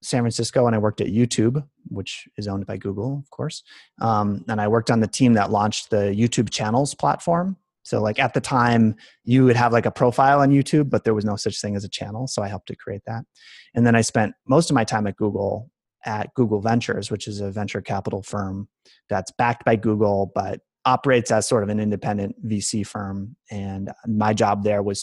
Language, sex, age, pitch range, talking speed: English, male, 30-49, 105-125 Hz, 220 wpm